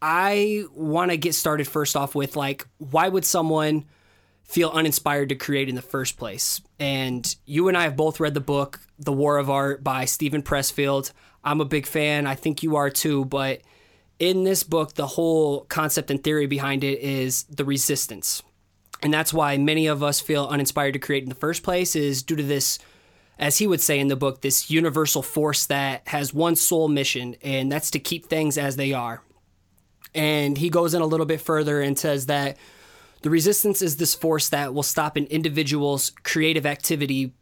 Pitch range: 140-155 Hz